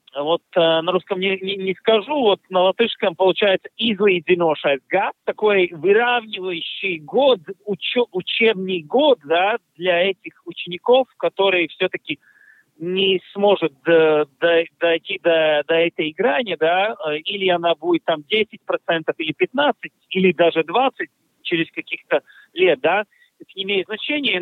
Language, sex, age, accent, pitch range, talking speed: Russian, male, 50-69, native, 170-215 Hz, 135 wpm